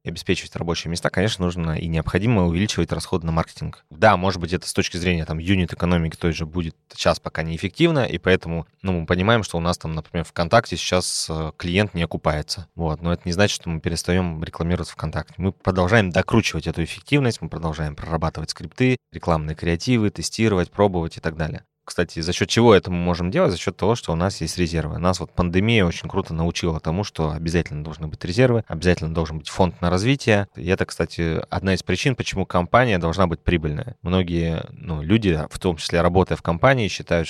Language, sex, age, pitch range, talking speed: Russian, male, 20-39, 80-95 Hz, 200 wpm